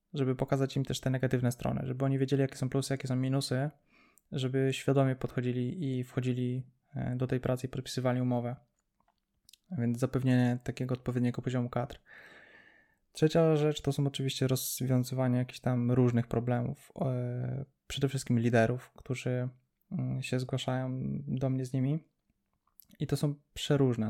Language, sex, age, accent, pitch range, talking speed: Polish, male, 20-39, native, 115-130 Hz, 145 wpm